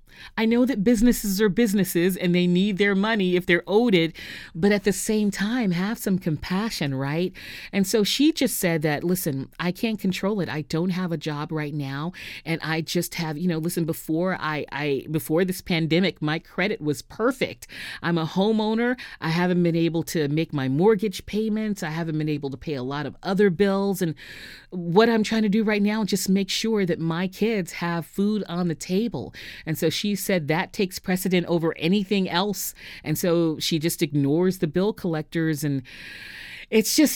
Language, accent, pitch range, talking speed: English, American, 160-205 Hz, 200 wpm